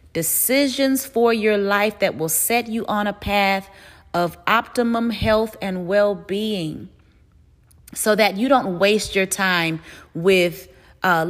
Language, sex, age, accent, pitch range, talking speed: English, female, 30-49, American, 185-250 Hz, 140 wpm